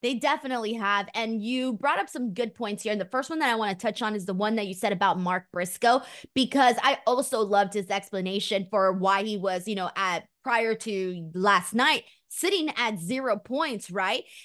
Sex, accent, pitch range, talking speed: female, American, 210-265 Hz, 215 wpm